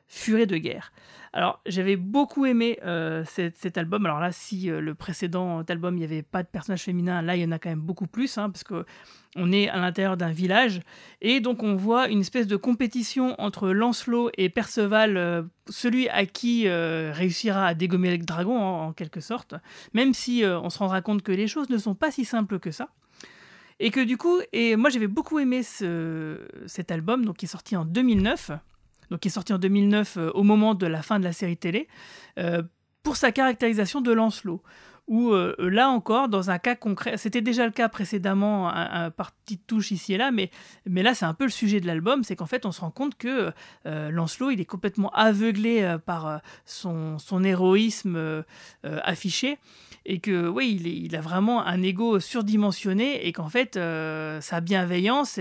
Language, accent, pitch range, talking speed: French, French, 175-230 Hz, 210 wpm